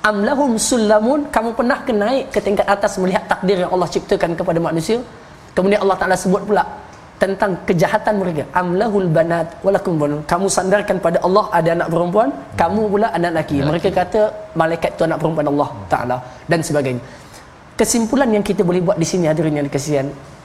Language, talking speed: Malayalam, 180 wpm